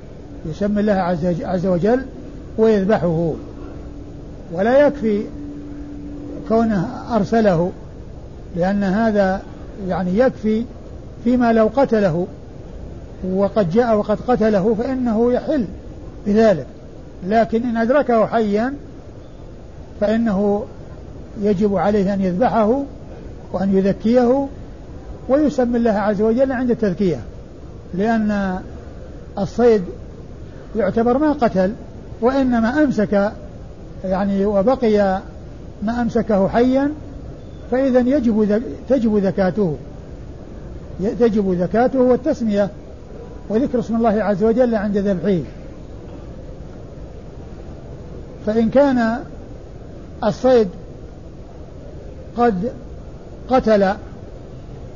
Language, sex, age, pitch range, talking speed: Arabic, male, 60-79, 195-240 Hz, 80 wpm